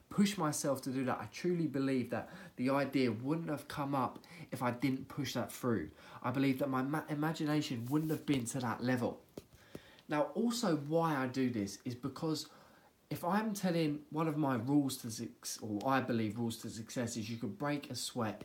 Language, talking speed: English, 200 wpm